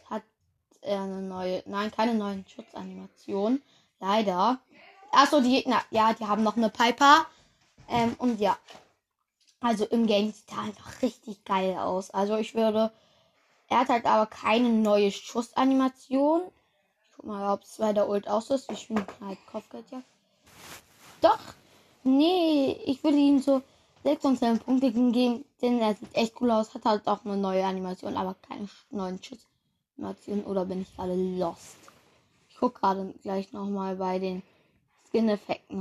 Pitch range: 200-260 Hz